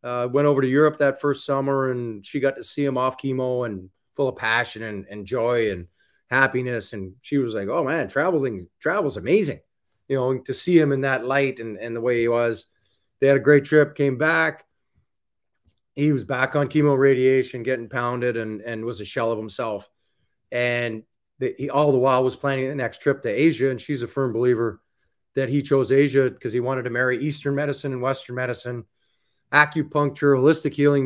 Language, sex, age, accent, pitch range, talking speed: English, male, 30-49, American, 120-145 Hz, 205 wpm